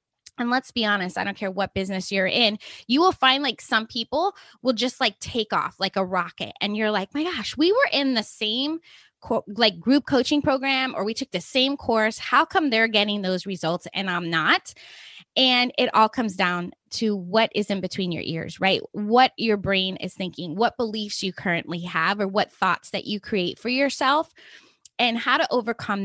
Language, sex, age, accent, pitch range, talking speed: English, female, 20-39, American, 195-270 Hz, 205 wpm